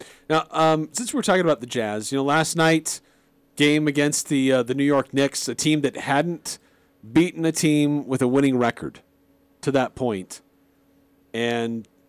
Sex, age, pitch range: male, 40-59, 120-160 Hz